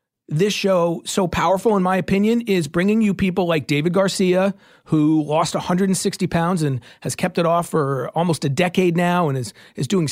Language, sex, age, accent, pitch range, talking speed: English, male, 40-59, American, 165-210 Hz, 190 wpm